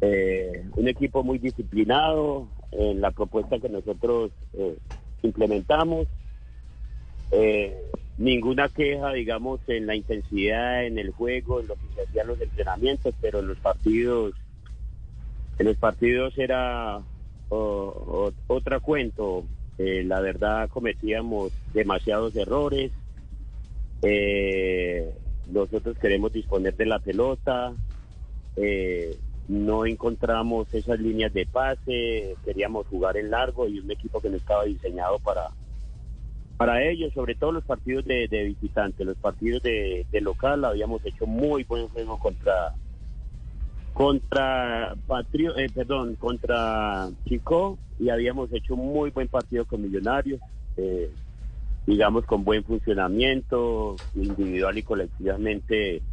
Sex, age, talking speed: male, 40-59, 120 wpm